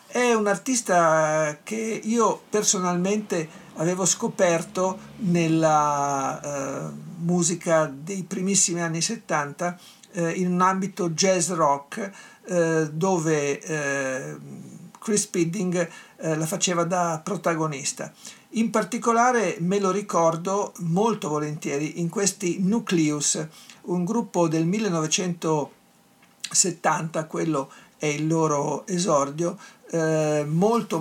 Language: Italian